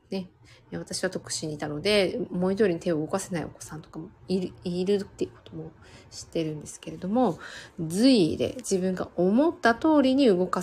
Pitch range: 170-255 Hz